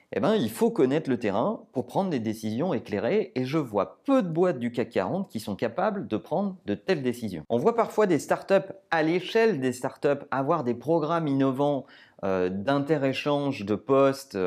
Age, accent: 30-49, French